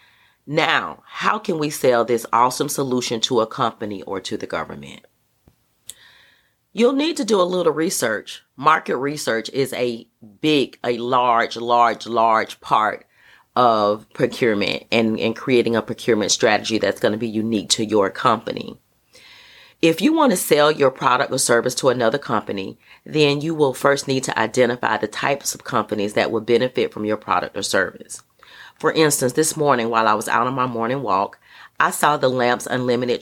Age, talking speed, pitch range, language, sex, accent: 40-59, 175 wpm, 115-145 Hz, English, female, American